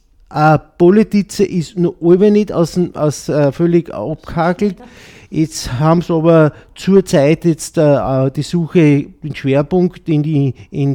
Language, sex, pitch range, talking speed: German, male, 140-170 Hz, 95 wpm